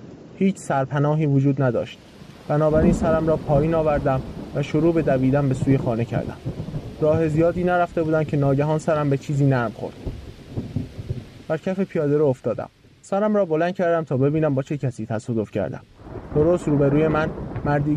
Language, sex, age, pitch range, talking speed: Persian, male, 20-39, 125-160 Hz, 165 wpm